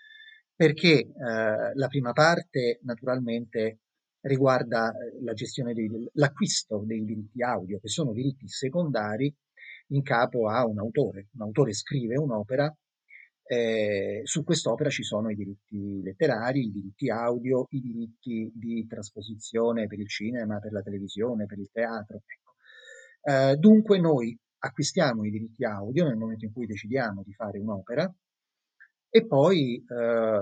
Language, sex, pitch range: Italian, male, 105-145 Hz